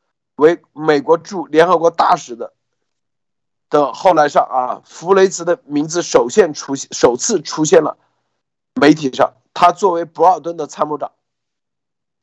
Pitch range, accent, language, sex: 145-180 Hz, native, Chinese, male